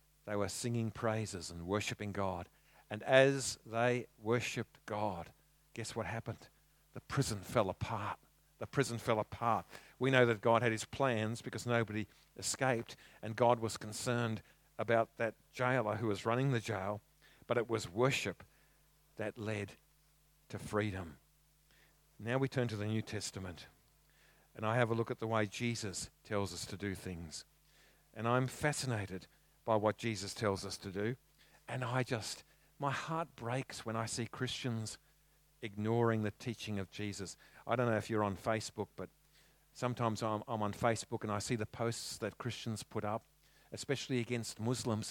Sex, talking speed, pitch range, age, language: male, 165 wpm, 105-130 Hz, 50-69, English